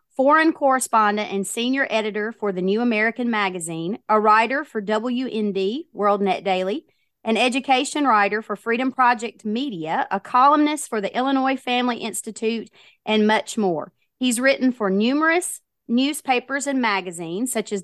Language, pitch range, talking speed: English, 215-250 Hz, 145 wpm